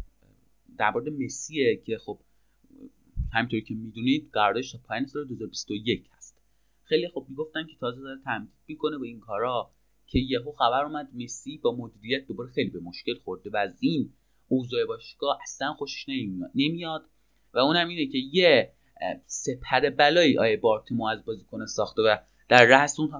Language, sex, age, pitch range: Persian, male, 30-49, 120-155 Hz